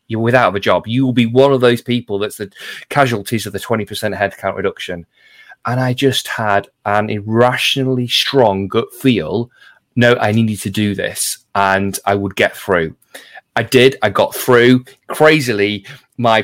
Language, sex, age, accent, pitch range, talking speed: English, male, 30-49, British, 105-130 Hz, 170 wpm